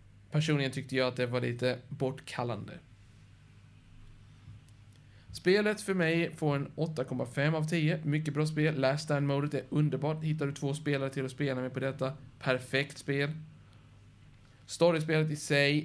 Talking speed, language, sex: 140 wpm, Swedish, male